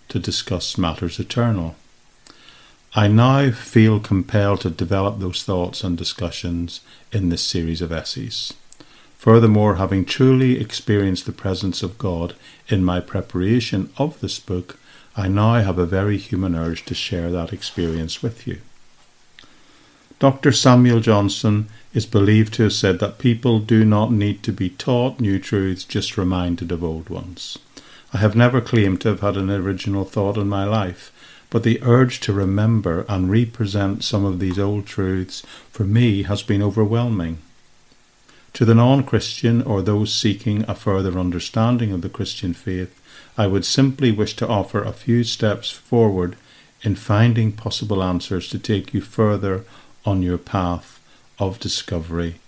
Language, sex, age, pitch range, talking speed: English, male, 50-69, 95-115 Hz, 155 wpm